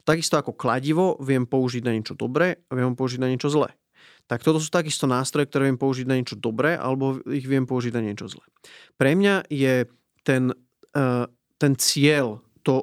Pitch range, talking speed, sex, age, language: 120-145 Hz, 185 wpm, male, 30-49, Slovak